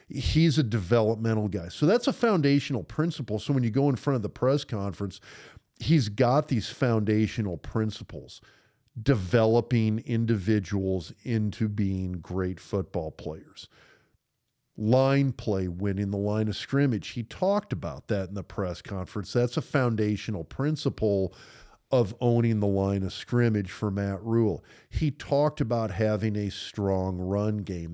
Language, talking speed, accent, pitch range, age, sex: English, 145 wpm, American, 100-120 Hz, 50-69, male